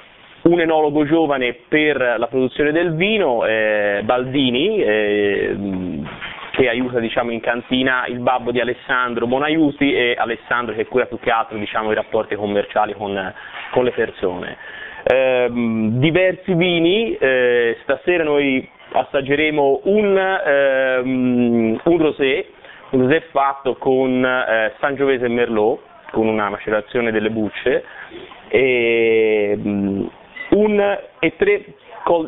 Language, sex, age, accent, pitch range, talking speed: Italian, male, 30-49, native, 120-150 Hz, 120 wpm